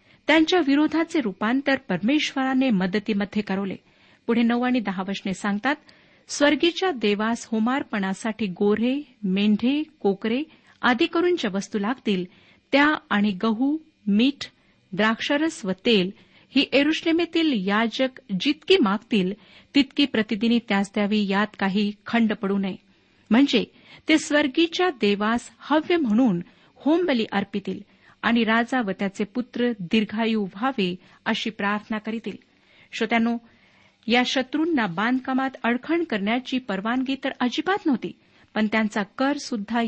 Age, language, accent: 50-69, Marathi, native